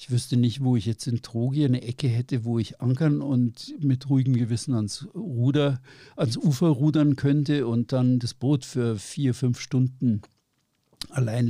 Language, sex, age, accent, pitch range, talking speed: German, male, 60-79, German, 110-130 Hz, 170 wpm